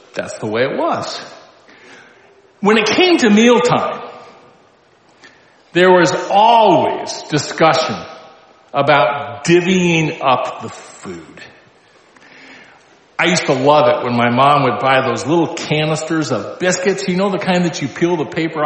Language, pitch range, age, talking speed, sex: English, 155-215 Hz, 50-69, 140 wpm, male